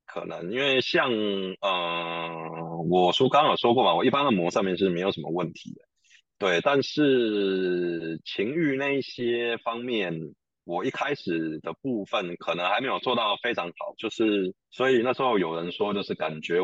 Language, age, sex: Chinese, 20-39, male